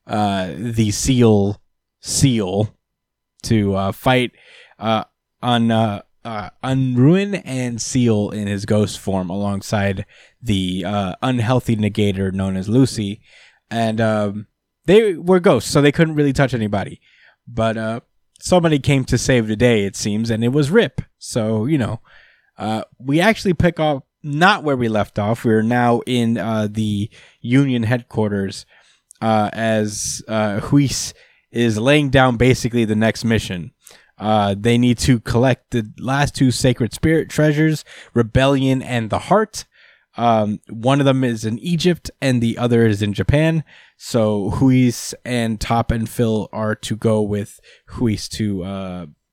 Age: 20-39